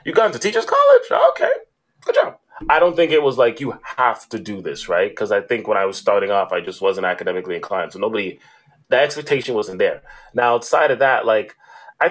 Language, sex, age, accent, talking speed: English, male, 20-39, American, 230 wpm